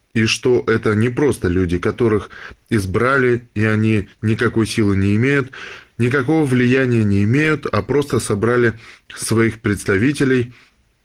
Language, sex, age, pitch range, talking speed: Russian, male, 20-39, 105-125 Hz, 125 wpm